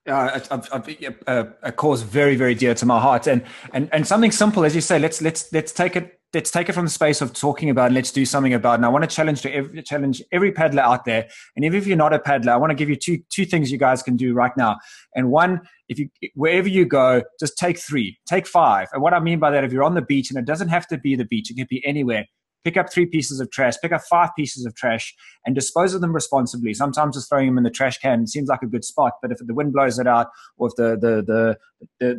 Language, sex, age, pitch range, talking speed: English, male, 20-39, 125-160 Hz, 285 wpm